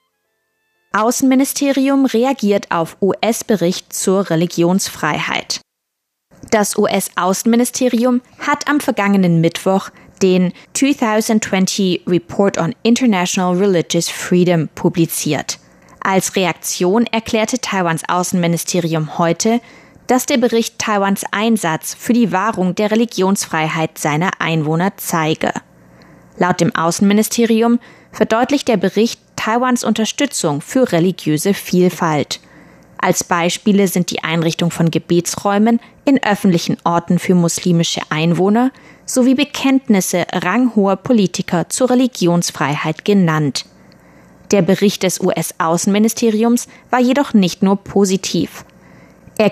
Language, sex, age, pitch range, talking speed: German, female, 20-39, 170-230 Hz, 95 wpm